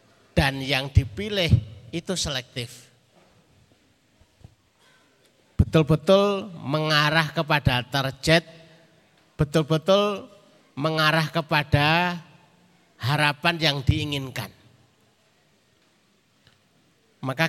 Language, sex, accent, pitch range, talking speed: Indonesian, male, native, 130-165 Hz, 55 wpm